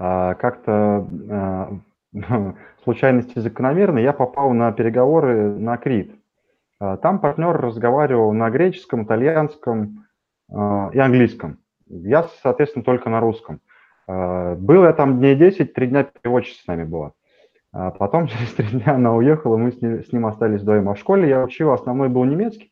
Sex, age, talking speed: male, 20-39, 160 wpm